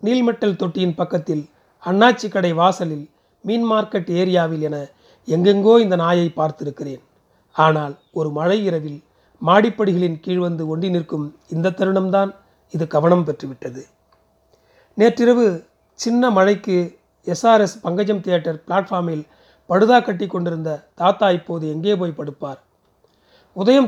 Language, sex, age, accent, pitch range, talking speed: Tamil, male, 40-59, native, 160-205 Hz, 110 wpm